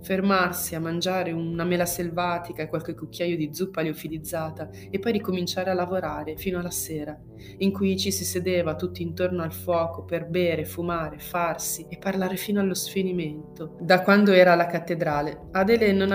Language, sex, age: Italian, female, 20-39